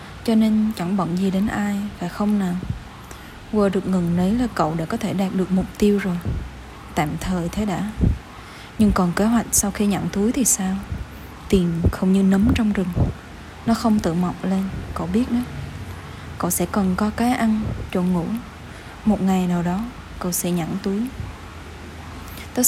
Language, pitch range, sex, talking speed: Vietnamese, 185-225 Hz, female, 185 wpm